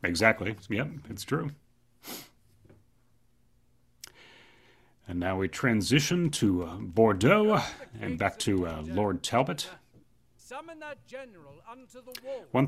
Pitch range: 95-130 Hz